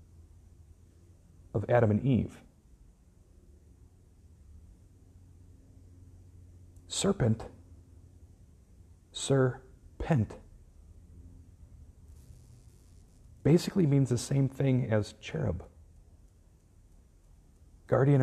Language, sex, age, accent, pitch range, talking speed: English, male, 40-59, American, 90-115 Hz, 45 wpm